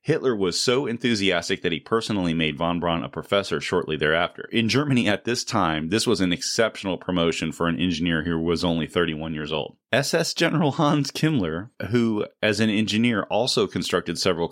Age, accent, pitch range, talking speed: 30-49, American, 85-110 Hz, 180 wpm